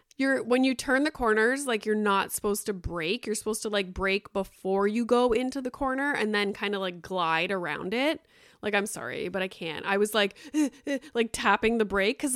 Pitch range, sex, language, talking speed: 195-260 Hz, female, English, 220 wpm